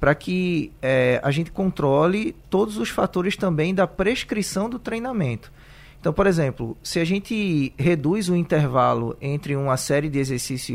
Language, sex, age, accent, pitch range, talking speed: Portuguese, male, 20-39, Brazilian, 140-185 Hz, 155 wpm